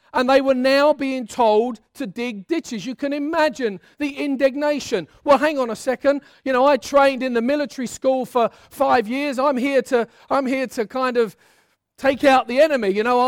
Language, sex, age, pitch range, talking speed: English, male, 40-59, 225-280 Hz, 200 wpm